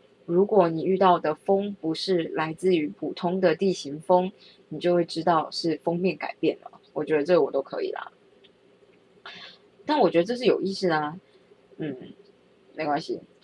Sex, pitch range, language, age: female, 170-250 Hz, Chinese, 20-39